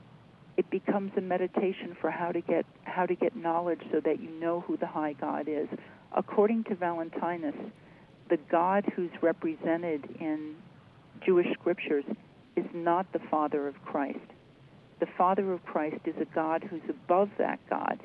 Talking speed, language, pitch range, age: 160 wpm, English, 155-185 Hz, 50-69